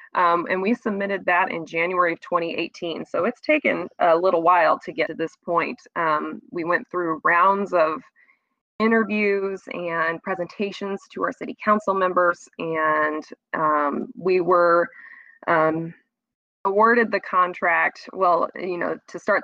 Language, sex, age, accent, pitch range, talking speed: English, female, 20-39, American, 165-200 Hz, 145 wpm